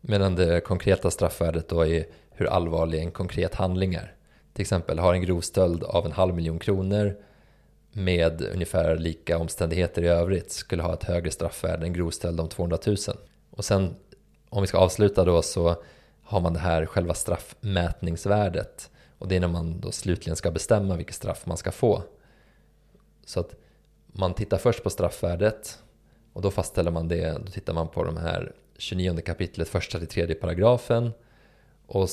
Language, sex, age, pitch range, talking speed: Swedish, male, 20-39, 85-95 Hz, 170 wpm